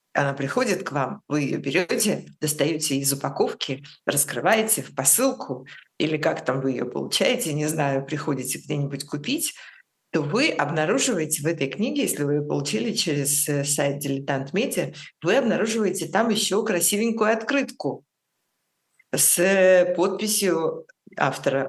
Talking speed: 125 wpm